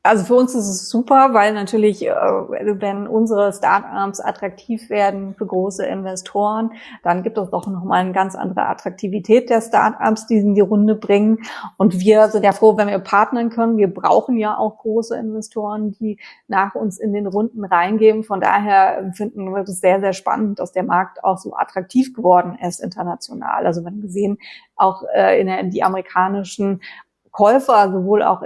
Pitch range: 195-220 Hz